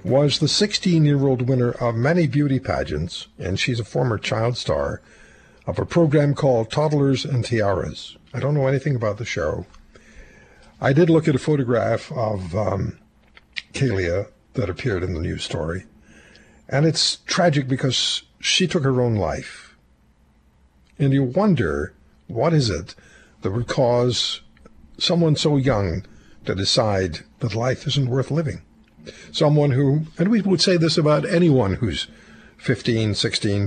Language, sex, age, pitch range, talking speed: English, male, 60-79, 110-150 Hz, 150 wpm